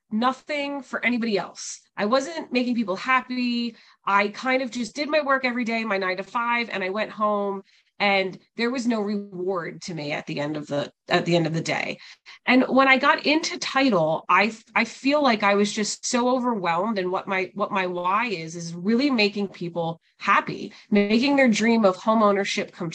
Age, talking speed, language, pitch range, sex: 30-49, 205 wpm, English, 180-245 Hz, female